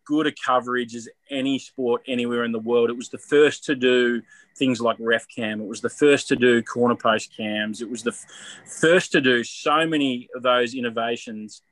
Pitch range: 120-145 Hz